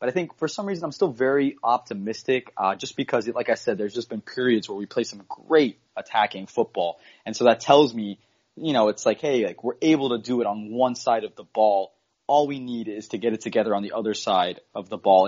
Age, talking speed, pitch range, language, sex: 20-39, 250 wpm, 105-135 Hz, English, male